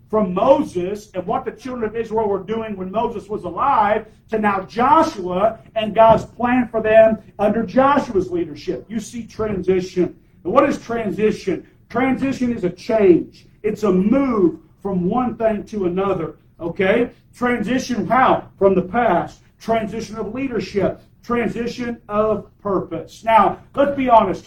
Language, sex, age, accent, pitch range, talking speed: English, male, 50-69, American, 180-225 Hz, 145 wpm